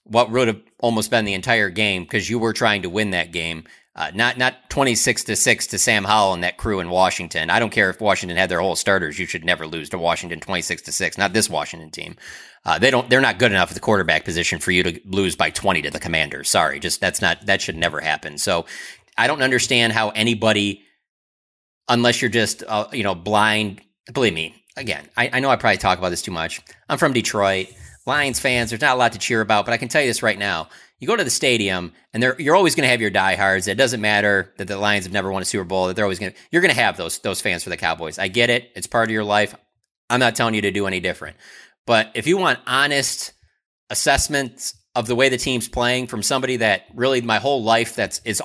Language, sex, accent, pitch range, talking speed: English, male, American, 95-115 Hz, 250 wpm